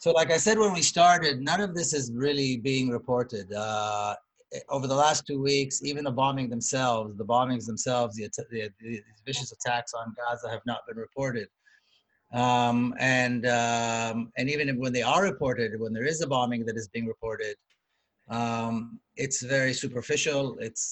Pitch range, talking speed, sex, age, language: 115-135 Hz, 175 wpm, male, 30-49, English